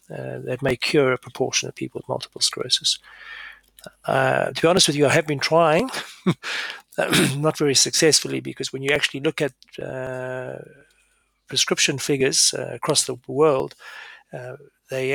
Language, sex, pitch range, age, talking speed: English, male, 125-150 Hz, 40-59, 155 wpm